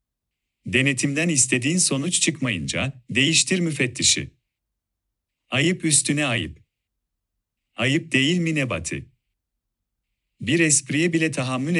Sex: male